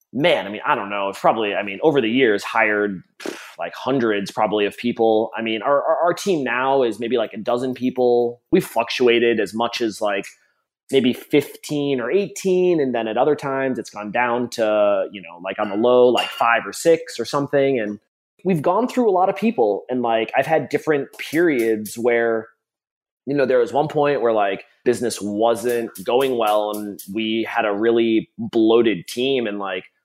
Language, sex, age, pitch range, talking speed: English, male, 20-39, 115-145 Hz, 200 wpm